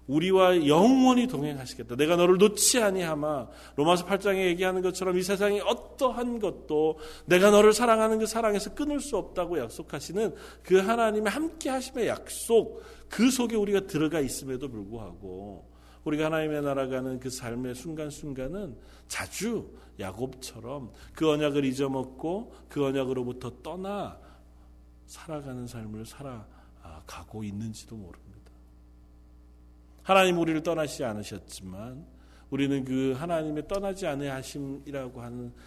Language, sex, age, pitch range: Korean, male, 40-59, 110-165 Hz